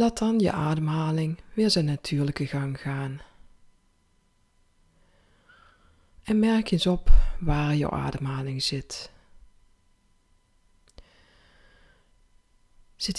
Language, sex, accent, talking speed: Dutch, female, Dutch, 80 wpm